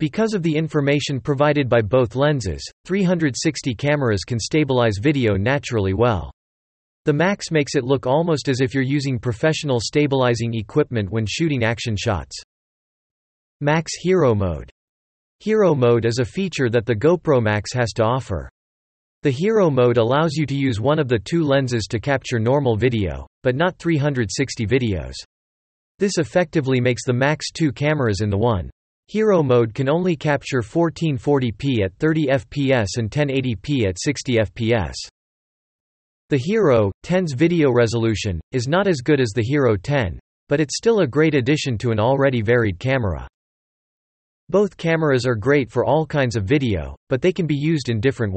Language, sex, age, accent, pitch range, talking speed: English, male, 40-59, American, 105-150 Hz, 160 wpm